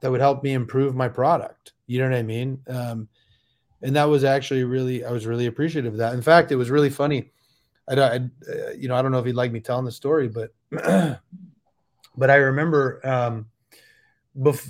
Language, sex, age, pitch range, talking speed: English, male, 30-49, 120-145 Hz, 210 wpm